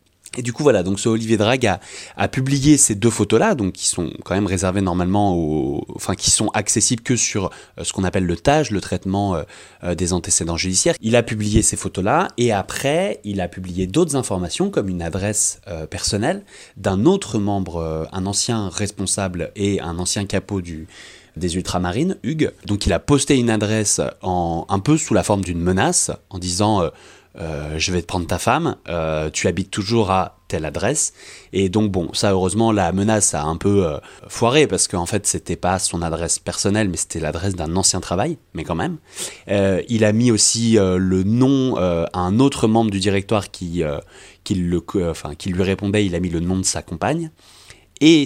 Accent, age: French, 30-49